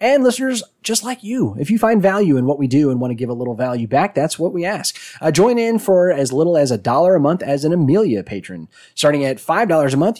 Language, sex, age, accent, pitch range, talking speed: English, male, 30-49, American, 120-165 Hz, 265 wpm